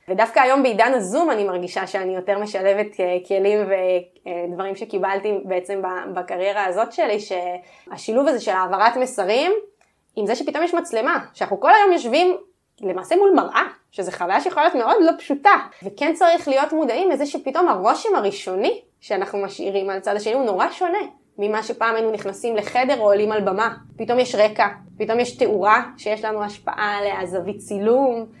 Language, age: Hebrew, 20-39